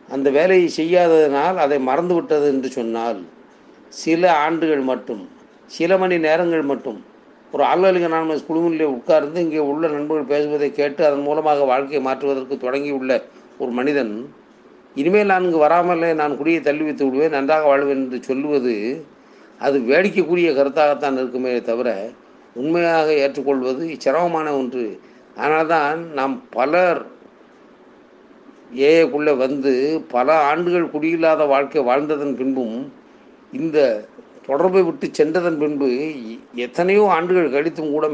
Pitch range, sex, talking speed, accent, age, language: 135-170 Hz, male, 110 wpm, native, 50-69, Tamil